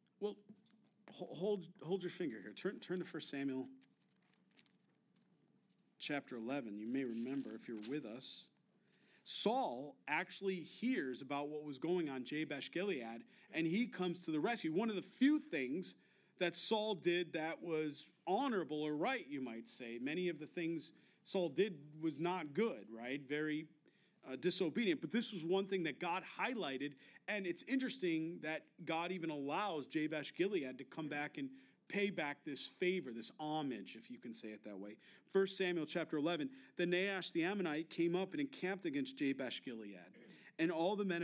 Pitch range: 145-195 Hz